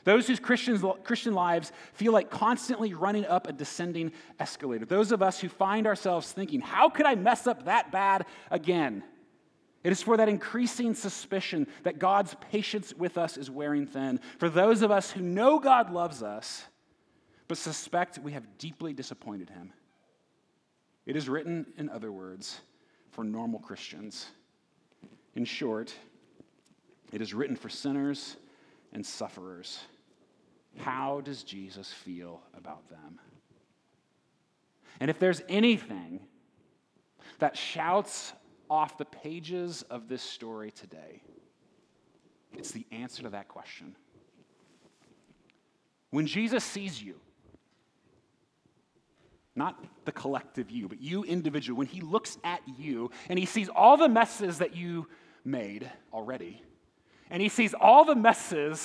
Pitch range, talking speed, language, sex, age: 140-215 Hz, 135 wpm, English, male, 30-49